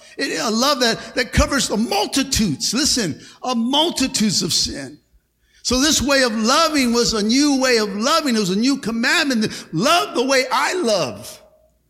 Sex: male